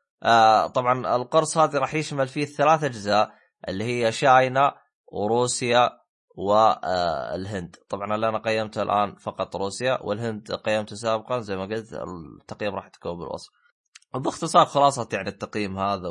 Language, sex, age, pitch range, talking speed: Arabic, male, 20-39, 105-140 Hz, 135 wpm